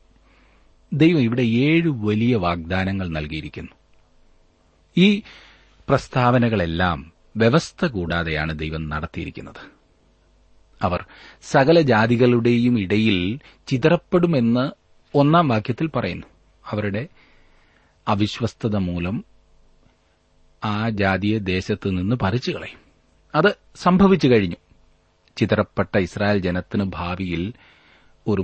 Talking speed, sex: 75 wpm, male